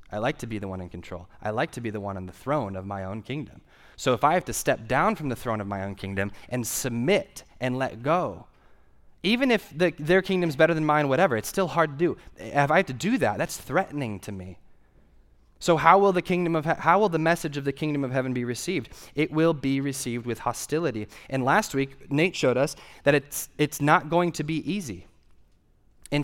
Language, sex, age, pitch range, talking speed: English, male, 20-39, 115-165 Hz, 235 wpm